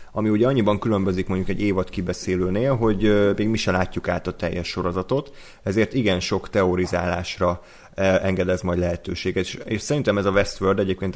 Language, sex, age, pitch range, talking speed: Hungarian, male, 30-49, 90-105 Hz, 165 wpm